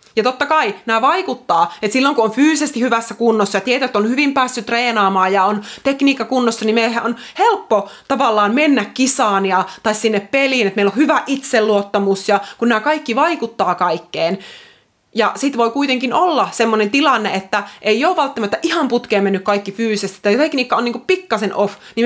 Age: 30-49